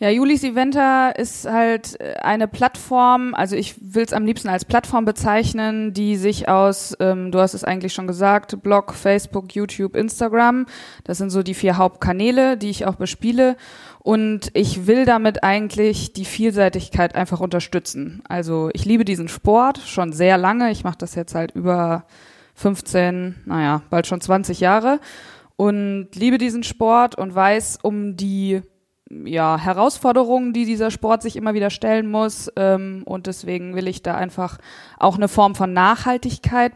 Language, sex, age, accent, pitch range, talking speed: German, female, 20-39, German, 185-225 Hz, 160 wpm